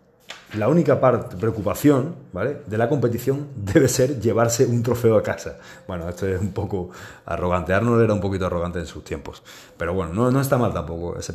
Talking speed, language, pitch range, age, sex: 185 wpm, Spanish, 95-120 Hz, 30-49, male